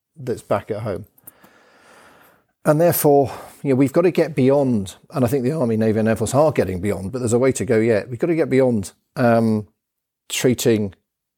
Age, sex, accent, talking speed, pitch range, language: 50-69, male, British, 205 wpm, 110-145 Hz, English